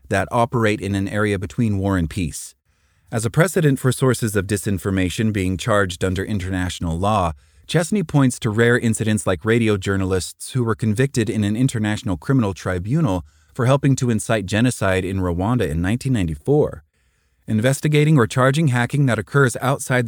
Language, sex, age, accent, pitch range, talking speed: English, male, 30-49, American, 90-125 Hz, 160 wpm